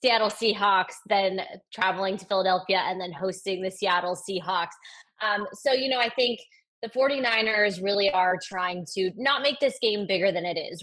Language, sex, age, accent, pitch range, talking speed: English, female, 20-39, American, 185-225 Hz, 175 wpm